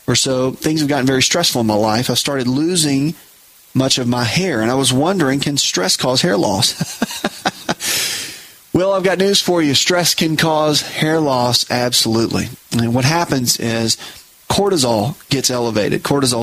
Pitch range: 120-140 Hz